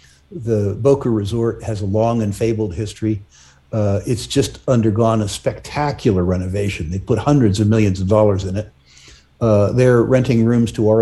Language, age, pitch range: English, 60-79, 100-120 Hz